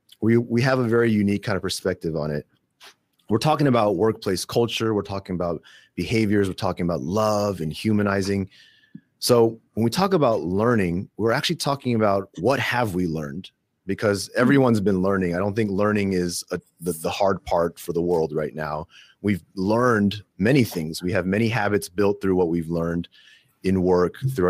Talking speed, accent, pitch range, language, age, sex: 185 wpm, American, 85-110 Hz, English, 30-49, male